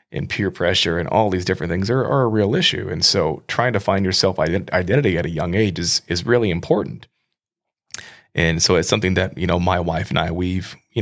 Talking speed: 230 wpm